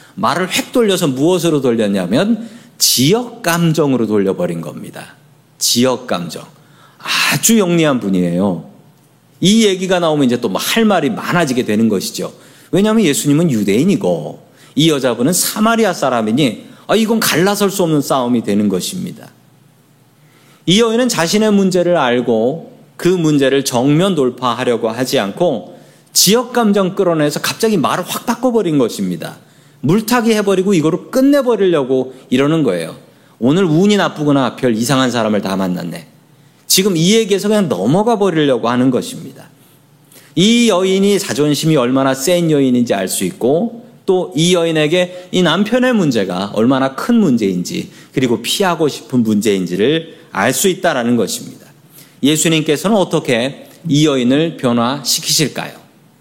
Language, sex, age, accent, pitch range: Korean, male, 40-59, native, 130-200 Hz